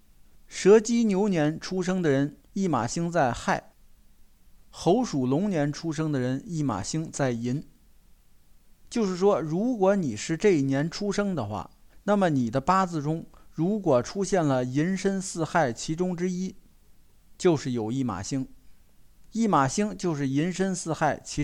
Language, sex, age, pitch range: Chinese, male, 50-69, 135-195 Hz